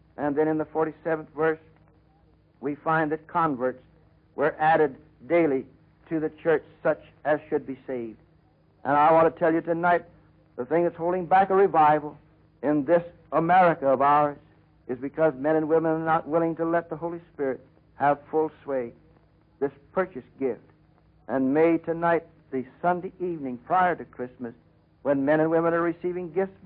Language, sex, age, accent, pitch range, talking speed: English, male, 60-79, American, 125-160 Hz, 170 wpm